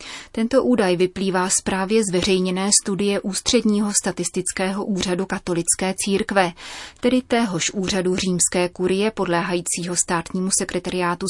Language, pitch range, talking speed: Czech, 185-220 Hz, 105 wpm